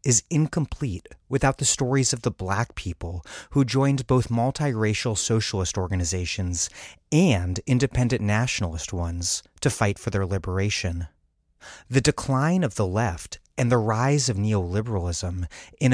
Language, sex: English, male